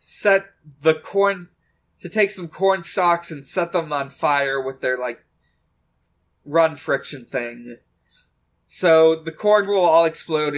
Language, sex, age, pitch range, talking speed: English, male, 30-49, 130-175 Hz, 140 wpm